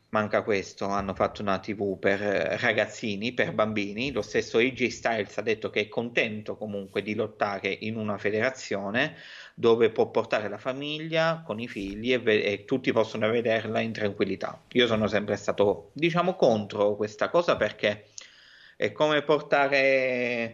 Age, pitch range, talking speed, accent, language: 30-49, 105-145 Hz, 150 wpm, native, Italian